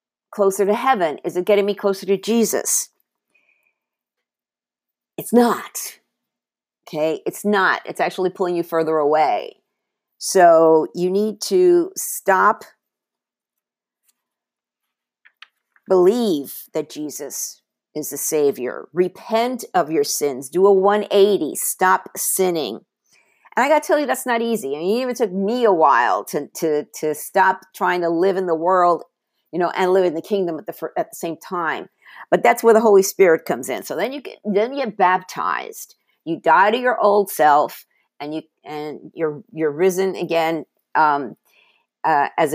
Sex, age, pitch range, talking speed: female, 50-69, 160-210 Hz, 160 wpm